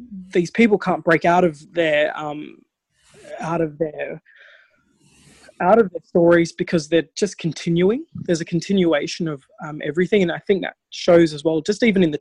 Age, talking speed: 20-39, 175 wpm